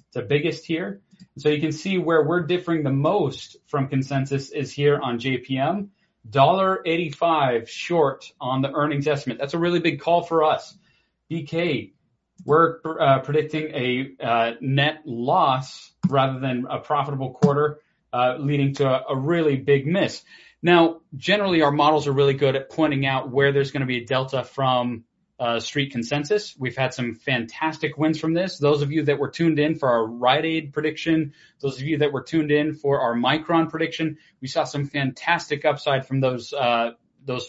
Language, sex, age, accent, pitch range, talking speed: English, male, 30-49, American, 130-160 Hz, 180 wpm